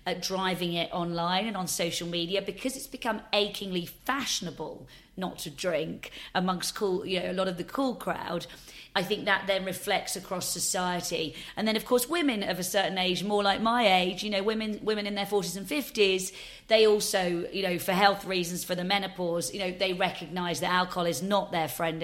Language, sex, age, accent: English, female, 40-59, British